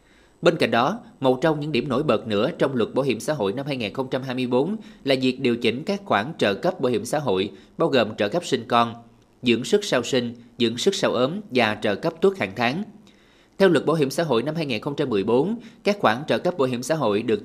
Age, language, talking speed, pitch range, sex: 20-39, Vietnamese, 230 wpm, 120-170 Hz, male